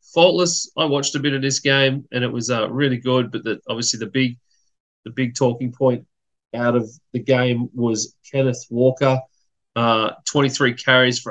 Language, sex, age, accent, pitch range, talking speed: English, male, 30-49, Australian, 110-130 Hz, 180 wpm